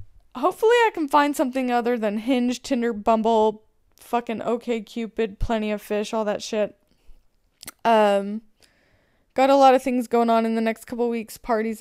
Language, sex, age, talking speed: English, female, 20-39, 170 wpm